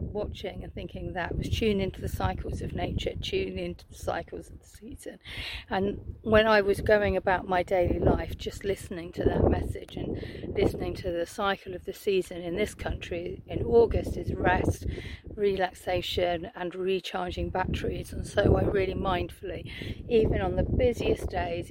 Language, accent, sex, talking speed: English, British, female, 170 wpm